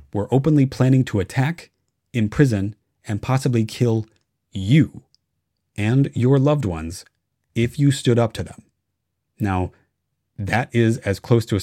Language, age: English, 30-49